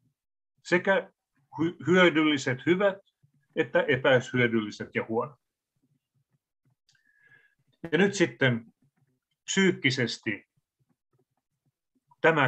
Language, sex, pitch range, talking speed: Finnish, male, 120-150 Hz, 60 wpm